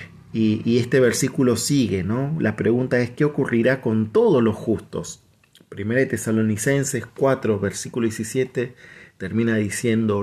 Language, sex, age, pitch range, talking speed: Spanish, male, 40-59, 105-130 Hz, 135 wpm